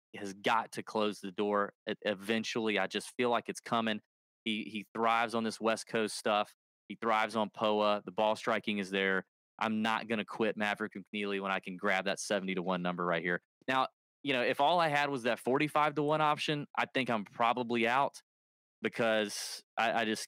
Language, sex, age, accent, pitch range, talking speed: English, male, 20-39, American, 95-115 Hz, 205 wpm